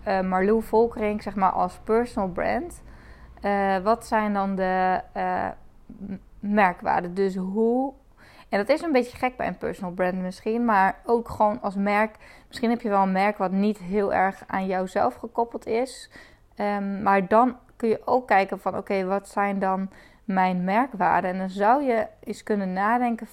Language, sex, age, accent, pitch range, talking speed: Dutch, female, 20-39, Dutch, 195-230 Hz, 180 wpm